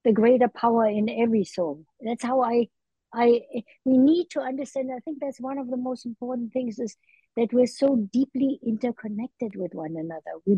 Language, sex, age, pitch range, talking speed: English, female, 60-79, 215-260 Hz, 185 wpm